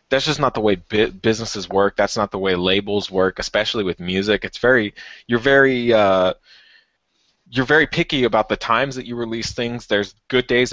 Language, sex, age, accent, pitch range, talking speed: English, male, 20-39, American, 100-120 Hz, 195 wpm